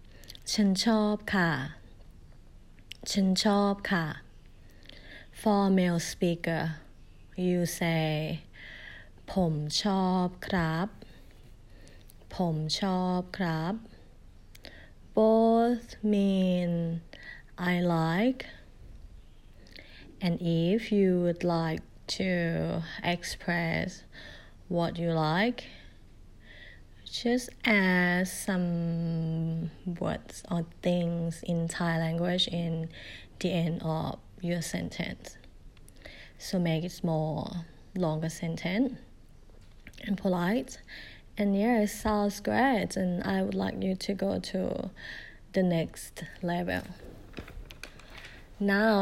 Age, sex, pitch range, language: 30-49, female, 165-200 Hz, Thai